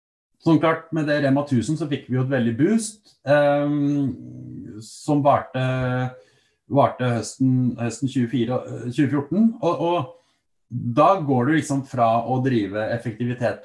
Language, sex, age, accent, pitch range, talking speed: English, male, 30-49, Norwegian, 115-140 Hz, 130 wpm